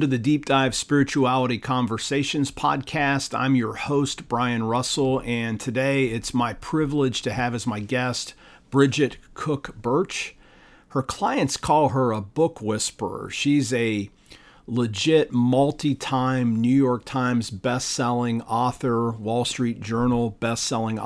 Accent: American